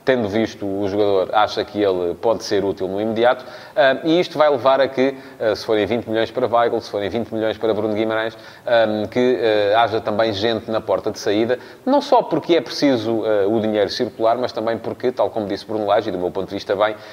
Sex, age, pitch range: male, 30-49, 110-135 Hz